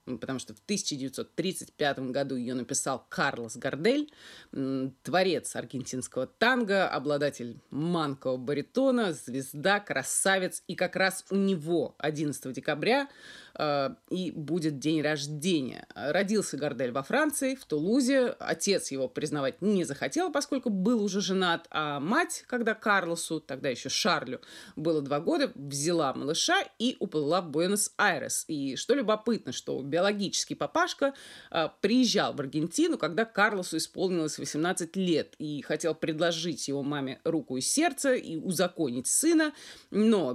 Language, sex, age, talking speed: Russian, female, 30-49, 130 wpm